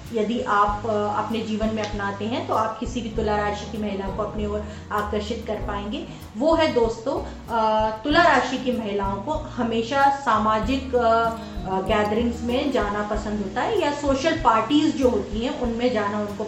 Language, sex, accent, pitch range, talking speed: Hindi, female, native, 205-250 Hz, 170 wpm